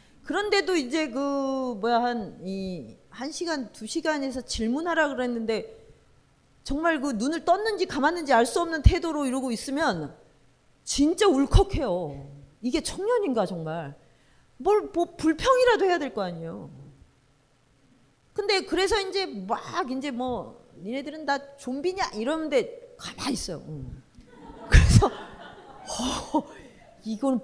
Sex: female